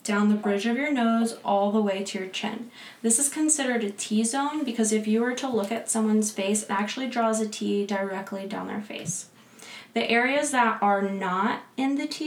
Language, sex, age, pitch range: English, female, 20-39, 205-245 Hz